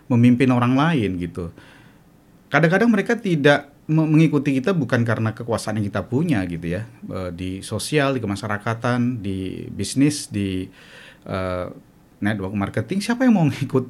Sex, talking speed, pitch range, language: male, 135 wpm, 115-160 Hz, Indonesian